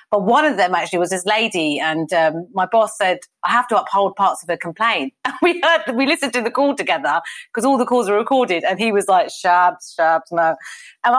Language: English